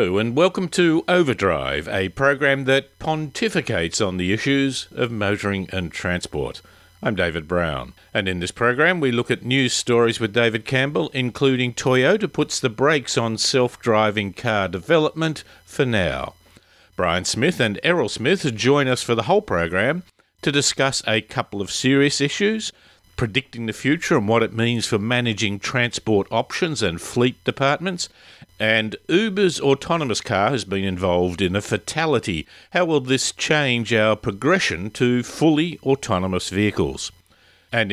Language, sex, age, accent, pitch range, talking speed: English, male, 50-69, Australian, 105-145 Hz, 150 wpm